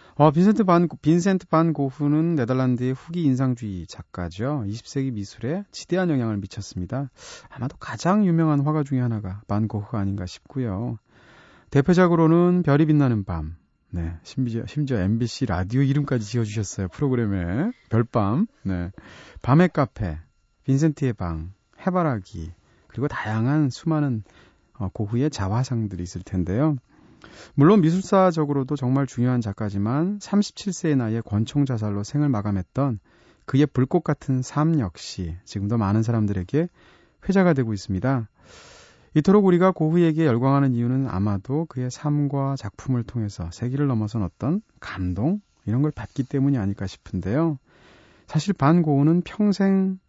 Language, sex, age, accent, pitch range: Korean, male, 30-49, native, 105-155 Hz